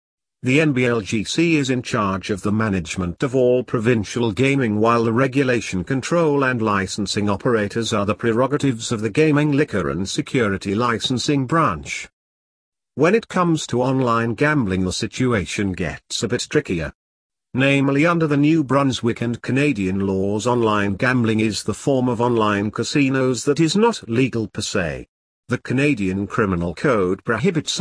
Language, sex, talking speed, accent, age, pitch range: English, male, 150 wpm, British, 50-69, 105-140 Hz